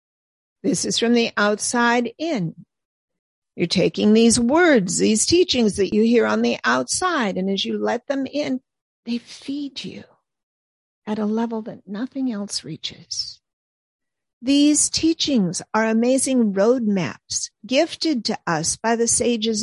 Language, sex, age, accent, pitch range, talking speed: English, female, 50-69, American, 185-245 Hz, 140 wpm